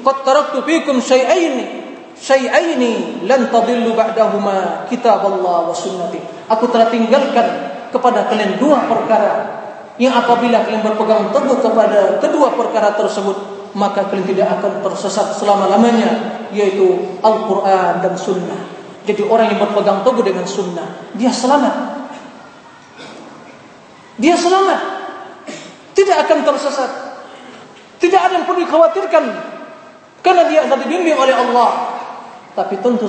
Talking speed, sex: 105 wpm, male